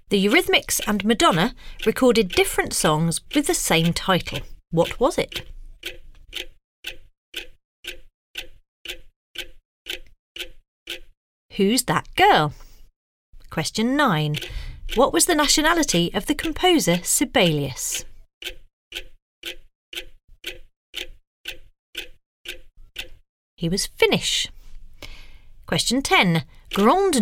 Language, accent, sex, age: English, British, female, 40-59